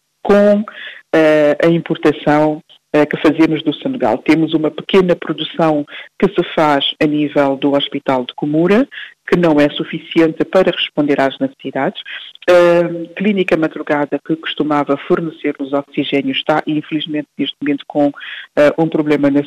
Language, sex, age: Portuguese, female, 50-69